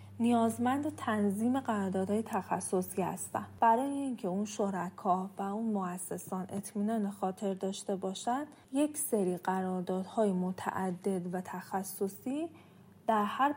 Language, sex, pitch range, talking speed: Persian, female, 190-230 Hz, 115 wpm